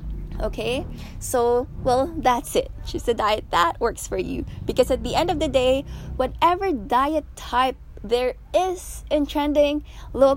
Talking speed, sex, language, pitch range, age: 155 wpm, female, English, 225-295 Hz, 20-39